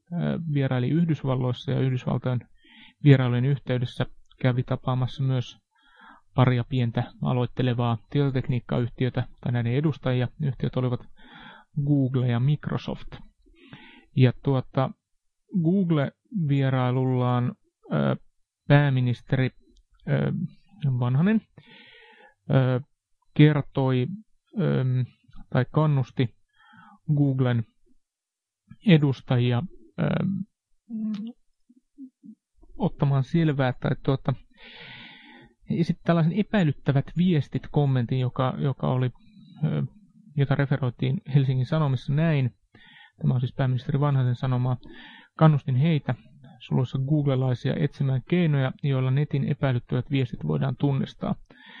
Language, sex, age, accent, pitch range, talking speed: Finnish, male, 30-49, native, 125-160 Hz, 80 wpm